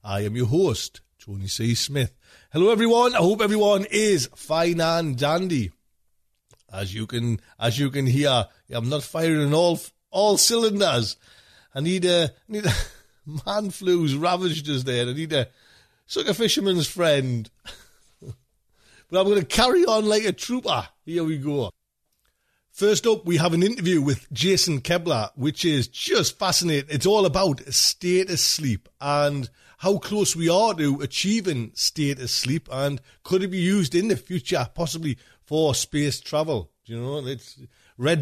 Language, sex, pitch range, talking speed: English, male, 120-185 Hz, 165 wpm